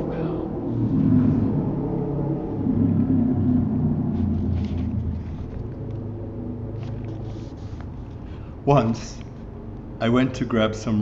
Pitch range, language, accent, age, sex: 95-120 Hz, English, American, 60-79, male